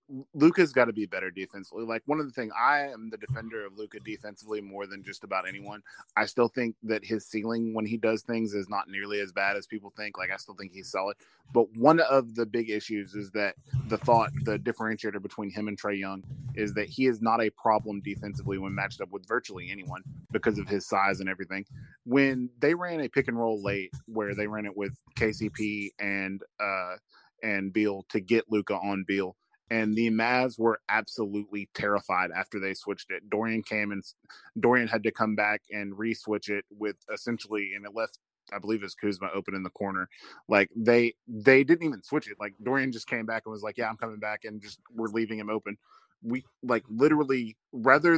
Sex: male